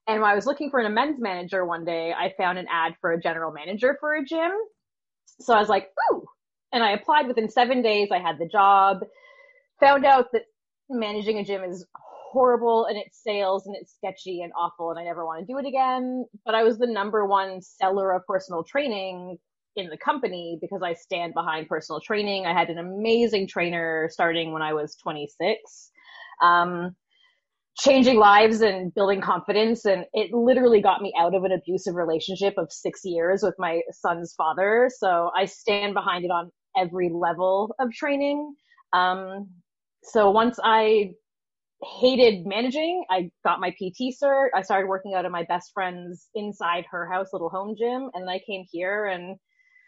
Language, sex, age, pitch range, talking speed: English, female, 20-39, 180-245 Hz, 185 wpm